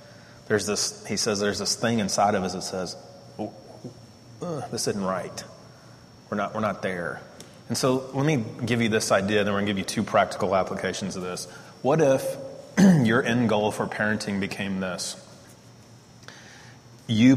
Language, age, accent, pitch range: English, 30-49, American, 100-120 Hz